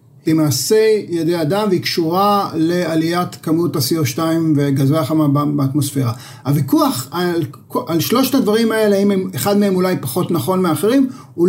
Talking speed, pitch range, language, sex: 140 wpm, 150-205 Hz, Hebrew, male